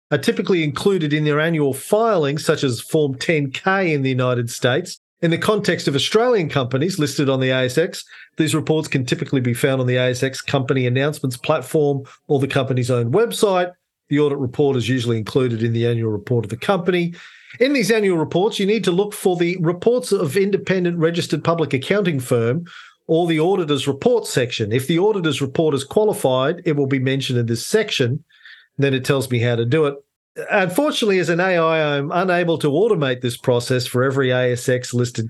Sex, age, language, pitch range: male, 40-59, English, 125-165 Hz